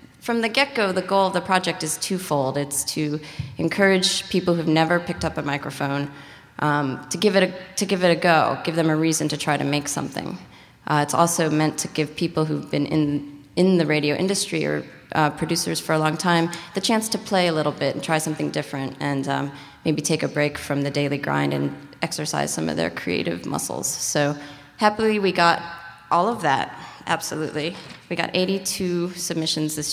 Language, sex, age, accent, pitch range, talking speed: English, female, 30-49, American, 145-175 Hz, 205 wpm